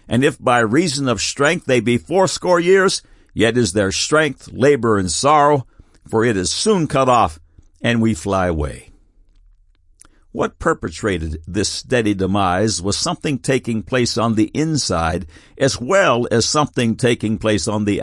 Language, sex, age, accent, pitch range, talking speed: English, male, 60-79, American, 90-145 Hz, 155 wpm